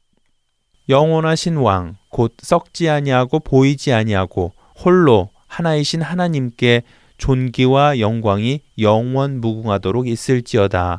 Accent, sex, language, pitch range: native, male, Korean, 105-145 Hz